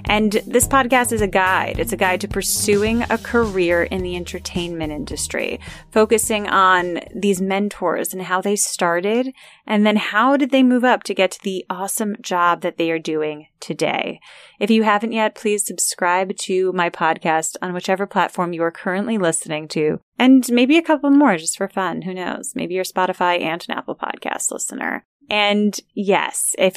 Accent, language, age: American, English, 20-39